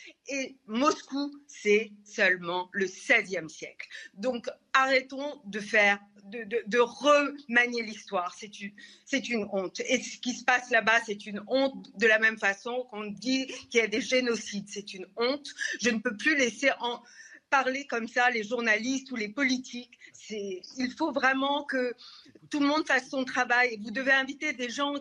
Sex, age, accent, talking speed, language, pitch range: female, 40-59, French, 180 wpm, French, 220-270 Hz